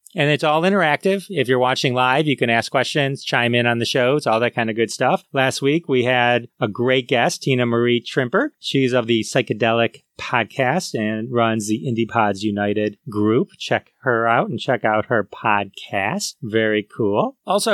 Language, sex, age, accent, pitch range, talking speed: English, male, 30-49, American, 120-155 Hz, 190 wpm